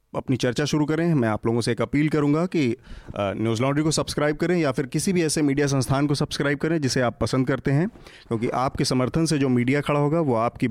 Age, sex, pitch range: 30-49, male, 115-145 Hz